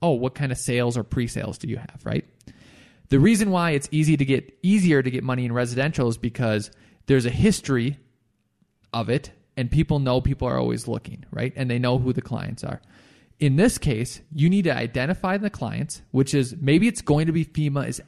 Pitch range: 125-160 Hz